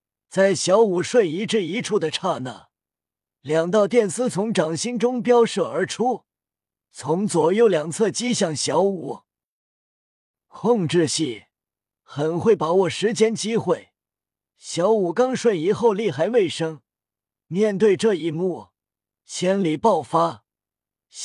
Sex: male